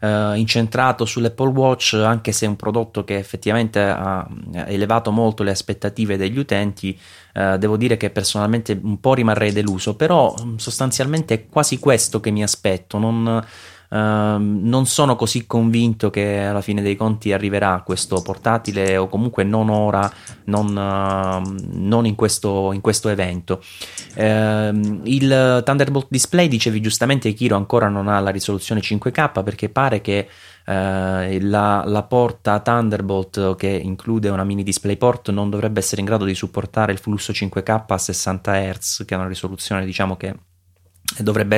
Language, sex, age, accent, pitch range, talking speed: Italian, male, 20-39, native, 100-115 Hz, 155 wpm